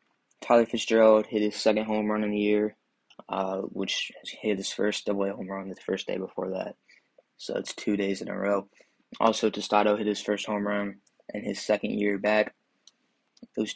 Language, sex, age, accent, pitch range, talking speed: English, male, 20-39, American, 100-110 Hz, 185 wpm